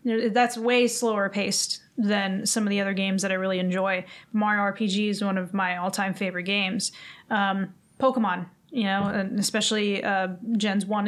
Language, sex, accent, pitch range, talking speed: English, female, American, 200-240 Hz, 175 wpm